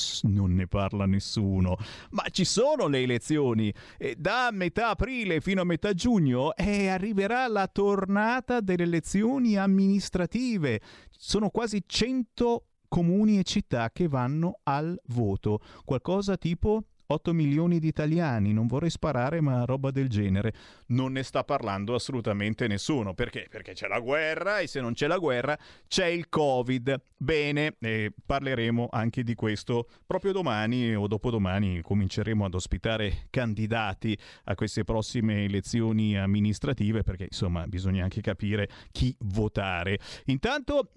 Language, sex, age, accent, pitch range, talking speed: Italian, male, 30-49, native, 110-180 Hz, 135 wpm